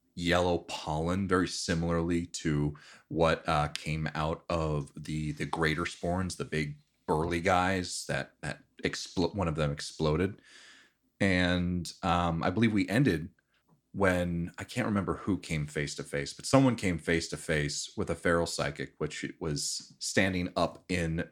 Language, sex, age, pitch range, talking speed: English, male, 30-49, 75-95 Hz, 155 wpm